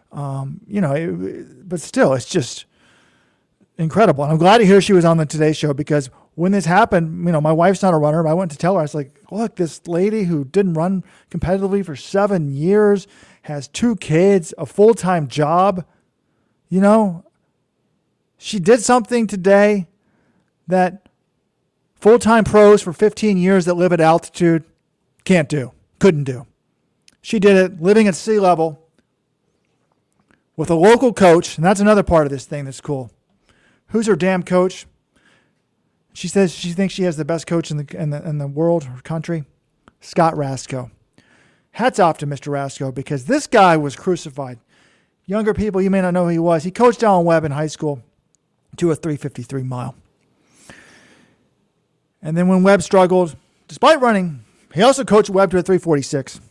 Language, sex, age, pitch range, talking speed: English, male, 40-59, 145-195 Hz, 180 wpm